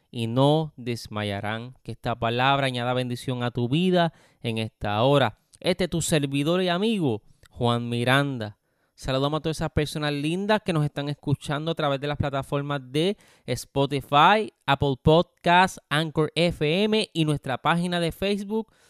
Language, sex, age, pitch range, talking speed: Spanish, male, 30-49, 130-175 Hz, 150 wpm